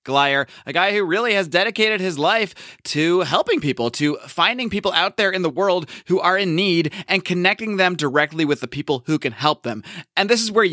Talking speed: 220 wpm